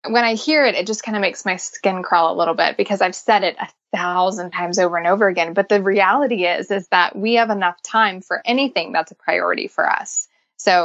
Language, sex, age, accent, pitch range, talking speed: English, female, 20-39, American, 180-225 Hz, 245 wpm